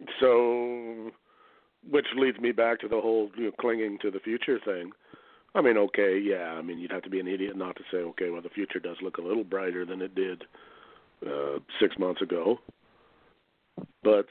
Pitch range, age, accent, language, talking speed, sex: 100-135 Hz, 50-69, American, English, 190 wpm, male